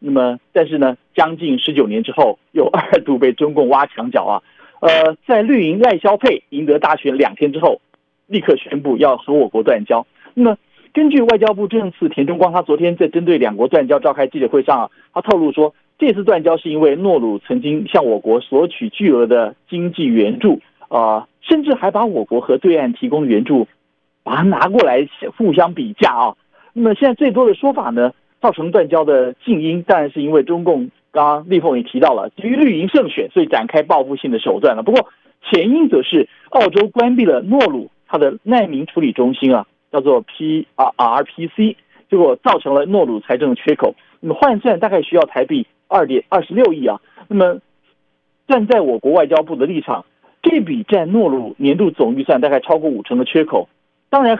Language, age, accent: Chinese, 50-69, native